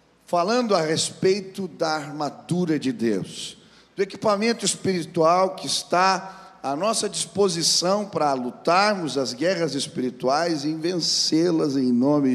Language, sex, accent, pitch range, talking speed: Portuguese, male, Brazilian, 150-190 Hz, 115 wpm